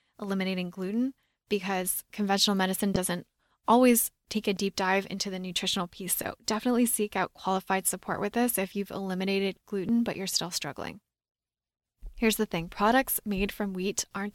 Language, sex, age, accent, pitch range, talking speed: English, female, 10-29, American, 190-225 Hz, 165 wpm